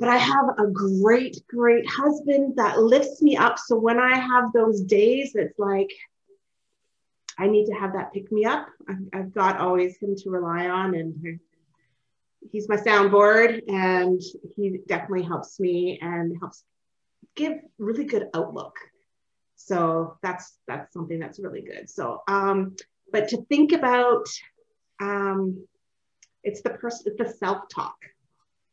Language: English